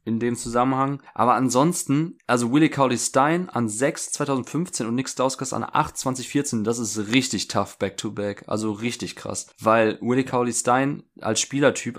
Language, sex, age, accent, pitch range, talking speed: German, male, 20-39, German, 110-130 Hz, 160 wpm